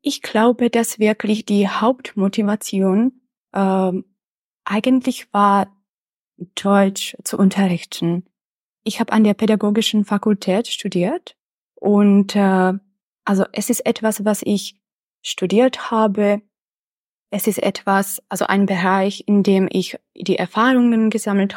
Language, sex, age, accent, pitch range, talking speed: Czech, female, 20-39, German, 195-220 Hz, 115 wpm